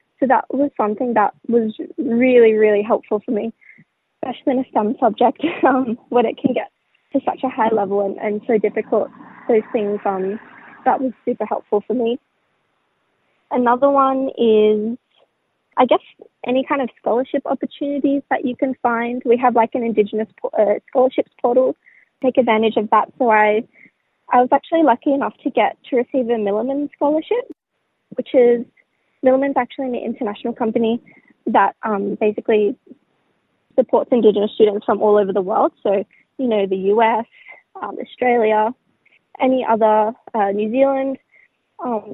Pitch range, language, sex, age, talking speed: 220-270 Hz, English, female, 20-39, 155 wpm